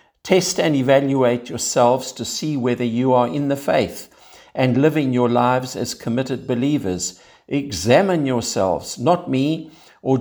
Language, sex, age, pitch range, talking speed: English, male, 60-79, 110-140 Hz, 140 wpm